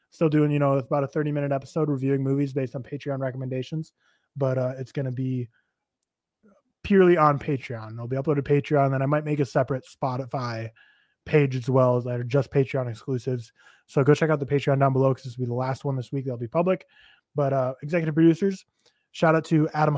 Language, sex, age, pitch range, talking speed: English, male, 20-39, 135-160 Hz, 215 wpm